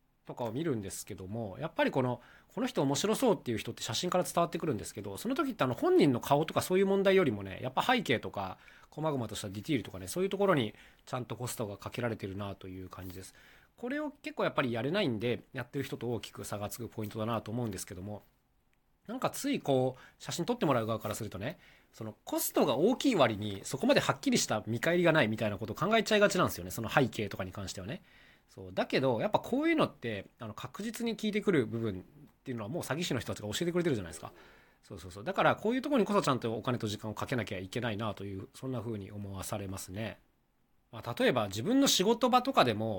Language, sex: Japanese, male